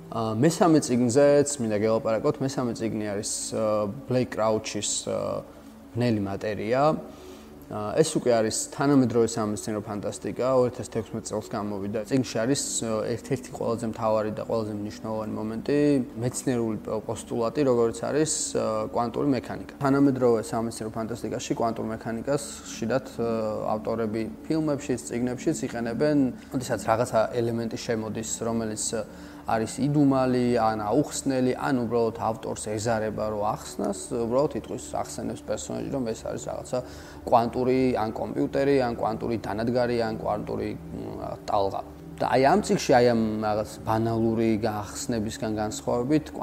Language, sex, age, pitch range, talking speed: English, male, 20-39, 110-130 Hz, 65 wpm